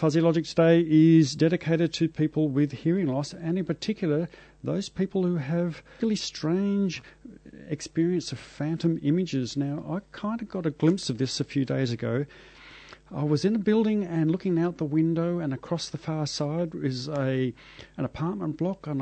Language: English